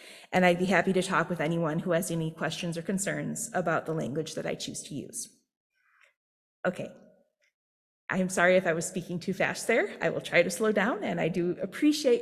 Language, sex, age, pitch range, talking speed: English, female, 30-49, 175-225 Hz, 210 wpm